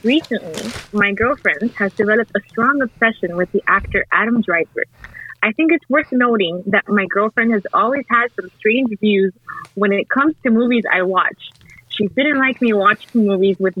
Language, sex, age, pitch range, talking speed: English, female, 20-39, 200-255 Hz, 180 wpm